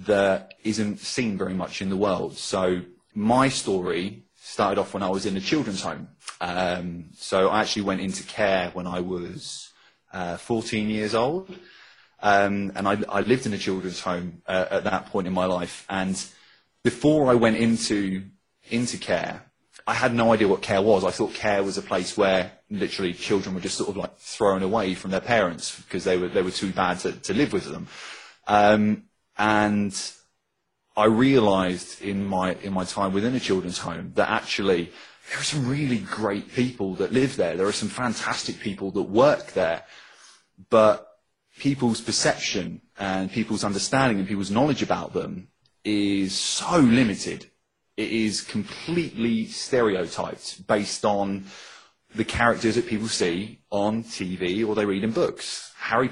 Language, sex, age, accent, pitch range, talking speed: English, male, 30-49, British, 95-110 Hz, 170 wpm